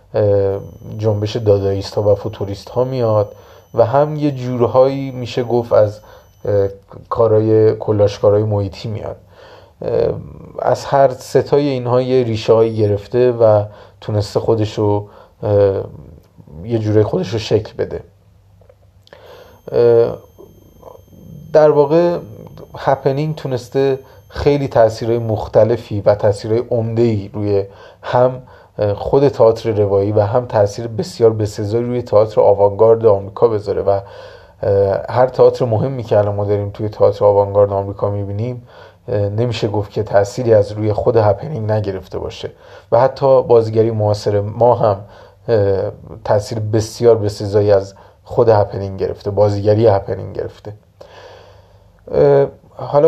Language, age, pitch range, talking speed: Persian, 30-49, 105-135 Hz, 115 wpm